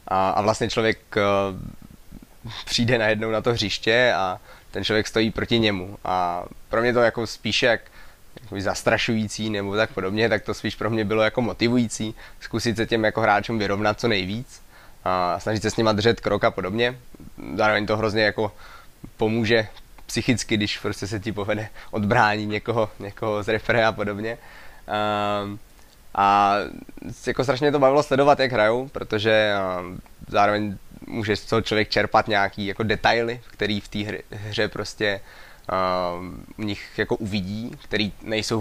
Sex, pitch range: male, 100-110 Hz